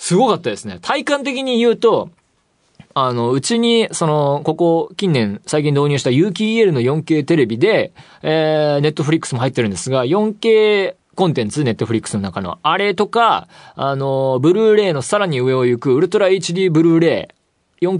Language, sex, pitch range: Japanese, male, 115-170 Hz